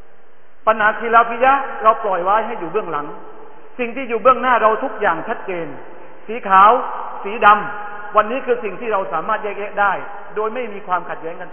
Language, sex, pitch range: Thai, male, 180-230 Hz